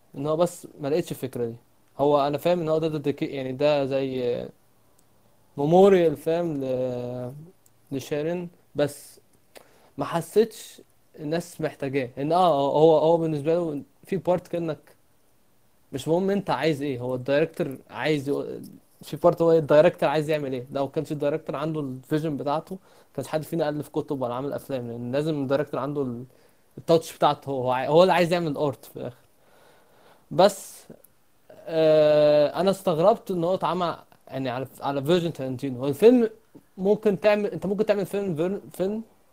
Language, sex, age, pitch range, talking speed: Arabic, male, 20-39, 140-180 Hz, 150 wpm